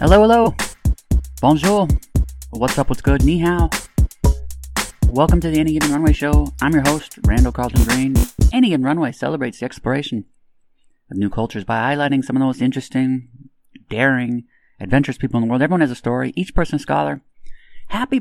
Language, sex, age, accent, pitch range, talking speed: English, male, 30-49, American, 105-135 Hz, 175 wpm